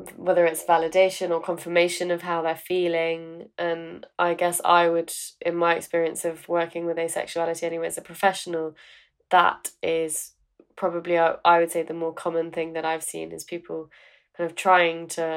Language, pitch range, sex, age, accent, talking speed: English, 165-180 Hz, female, 20-39, British, 170 wpm